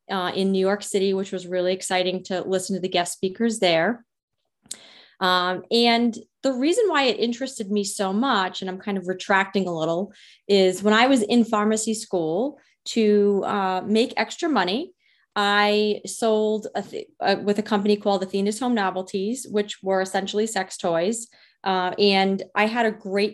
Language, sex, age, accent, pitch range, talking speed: English, female, 30-49, American, 190-225 Hz, 170 wpm